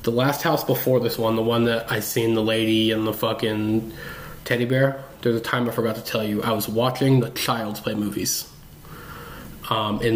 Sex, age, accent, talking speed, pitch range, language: male, 20-39, American, 205 wpm, 110-125 Hz, English